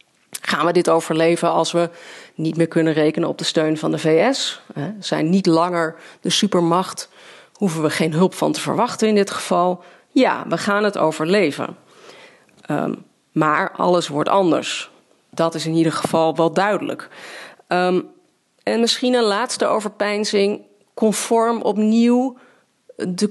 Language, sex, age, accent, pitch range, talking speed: Dutch, female, 40-59, Dutch, 160-200 Hz, 150 wpm